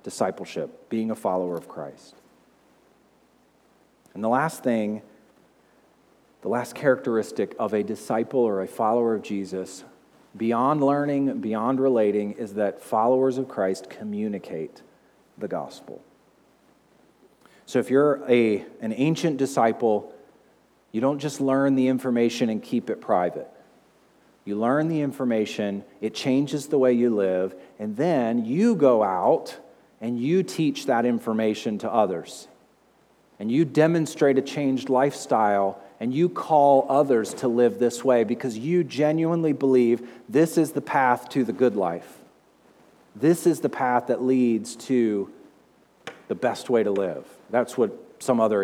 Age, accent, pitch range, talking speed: 40-59, American, 110-140 Hz, 140 wpm